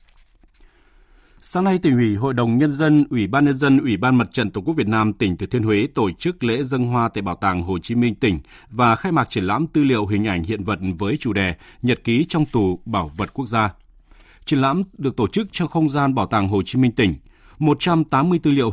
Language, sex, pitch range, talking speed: Vietnamese, male, 105-140 Hz, 250 wpm